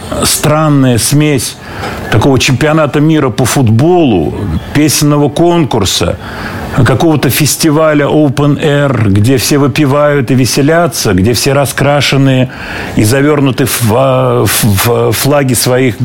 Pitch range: 105-140 Hz